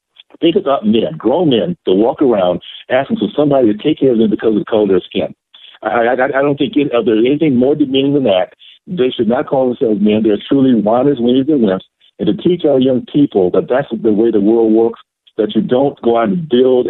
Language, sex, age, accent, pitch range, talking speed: English, male, 60-79, American, 105-130 Hz, 240 wpm